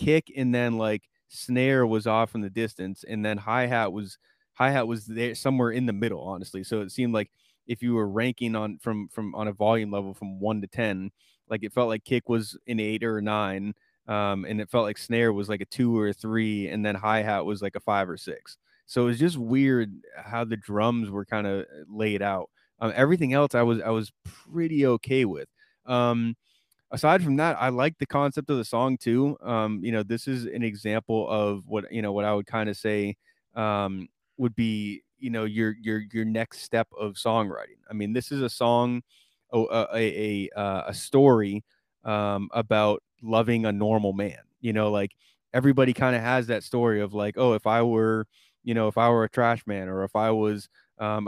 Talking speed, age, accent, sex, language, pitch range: 215 wpm, 20-39, American, male, English, 105-120 Hz